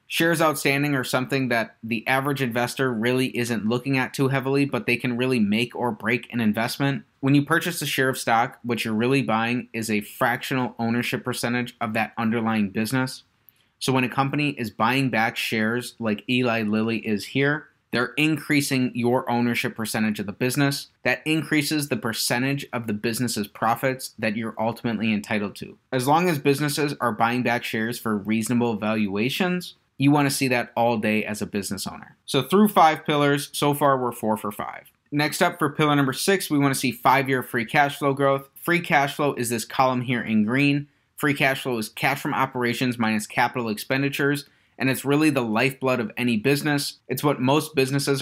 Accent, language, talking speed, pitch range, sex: American, English, 195 wpm, 115-140 Hz, male